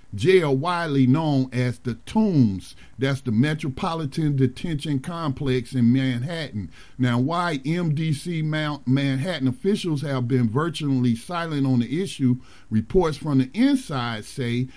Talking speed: 120 wpm